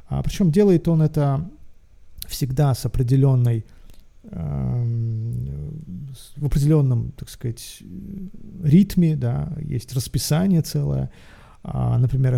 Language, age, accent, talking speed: Russian, 40-59, native, 70 wpm